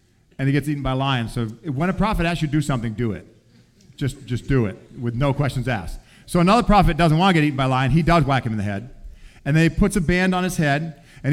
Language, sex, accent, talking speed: English, male, American, 280 wpm